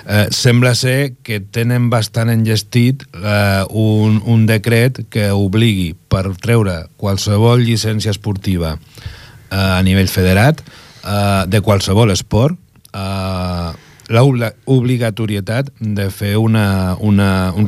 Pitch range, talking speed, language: 95-120 Hz, 120 wpm, Italian